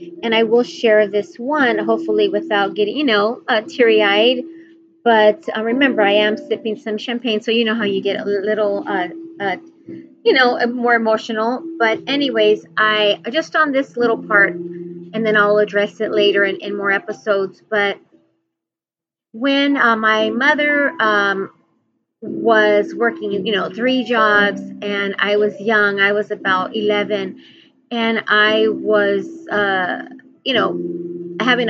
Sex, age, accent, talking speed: female, 30-49, American, 150 wpm